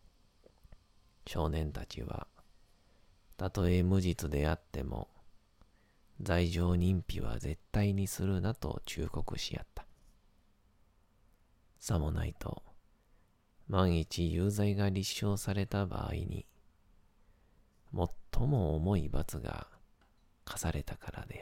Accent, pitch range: native, 85-100 Hz